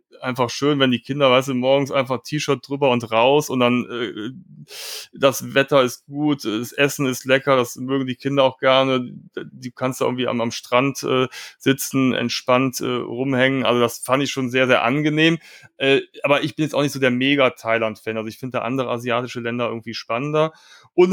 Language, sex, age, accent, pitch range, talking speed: German, male, 30-49, German, 120-140 Hz, 205 wpm